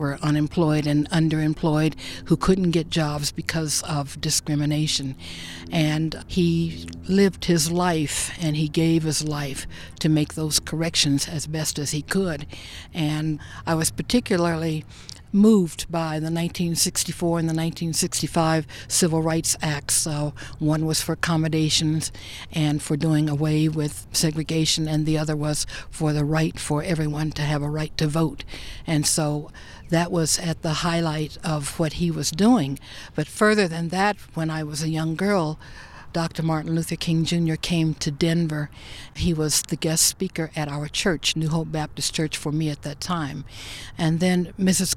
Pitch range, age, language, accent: 150-170 Hz, 60-79, English, American